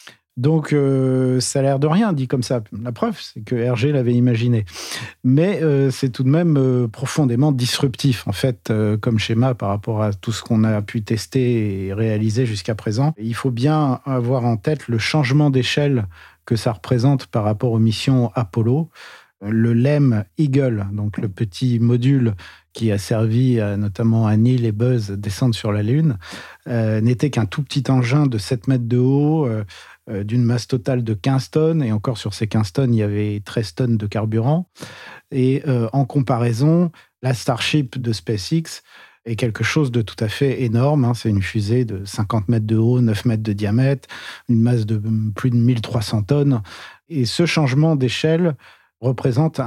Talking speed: 185 wpm